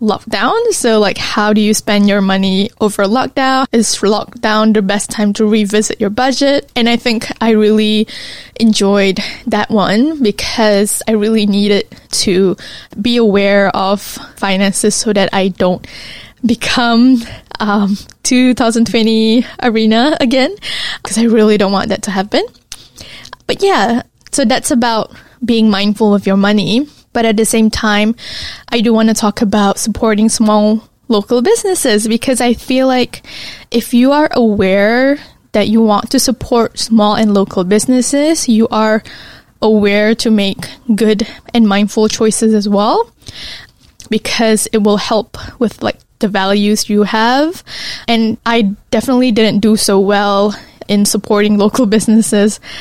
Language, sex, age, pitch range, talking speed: English, female, 10-29, 205-235 Hz, 145 wpm